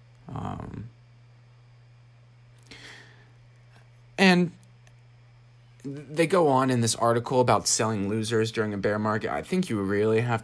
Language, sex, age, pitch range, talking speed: English, male, 30-49, 115-130 Hz, 115 wpm